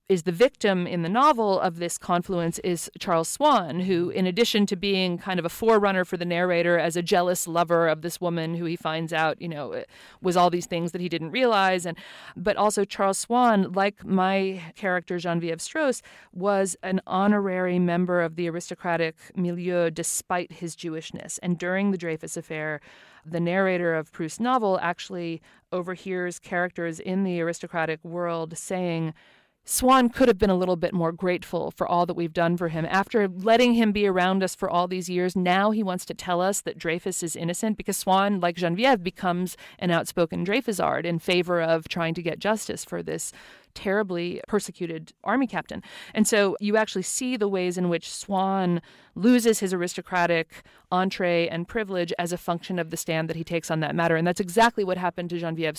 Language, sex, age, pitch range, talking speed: English, female, 40-59, 170-195 Hz, 190 wpm